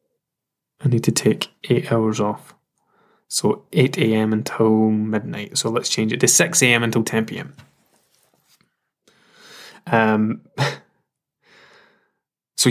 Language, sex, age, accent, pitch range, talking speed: English, male, 10-29, British, 115-140 Hz, 100 wpm